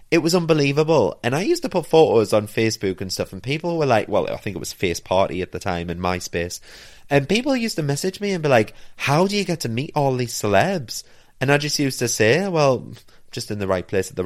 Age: 30-49